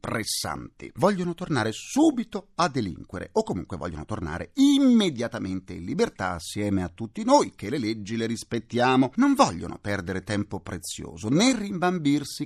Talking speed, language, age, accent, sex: 140 wpm, Italian, 40-59, native, male